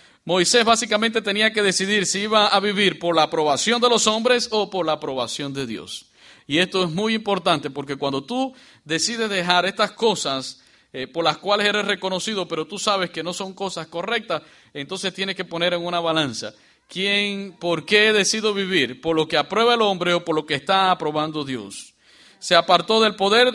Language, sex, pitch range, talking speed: English, male, 155-205 Hz, 195 wpm